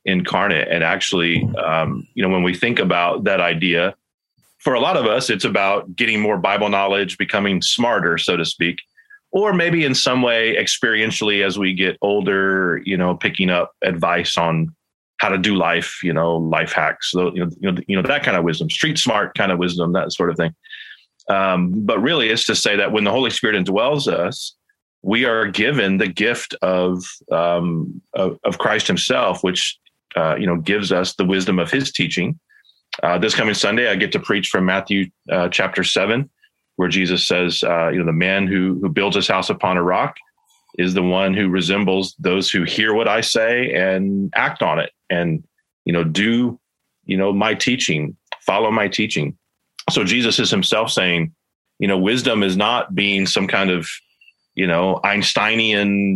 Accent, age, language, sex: American, 30-49, English, male